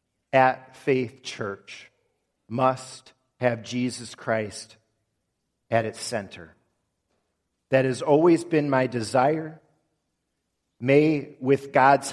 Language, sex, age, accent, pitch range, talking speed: English, male, 40-59, American, 125-165 Hz, 95 wpm